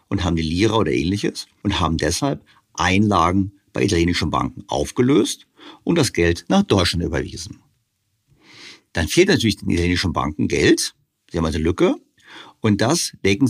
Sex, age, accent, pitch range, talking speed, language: male, 50-69, German, 90-120 Hz, 150 wpm, German